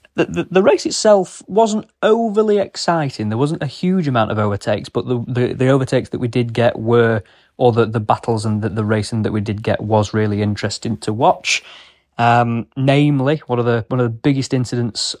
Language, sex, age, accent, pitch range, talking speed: English, male, 20-39, British, 110-145 Hz, 205 wpm